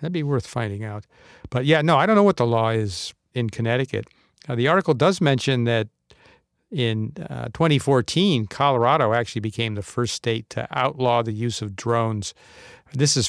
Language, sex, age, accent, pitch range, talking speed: English, male, 50-69, American, 115-140 Hz, 175 wpm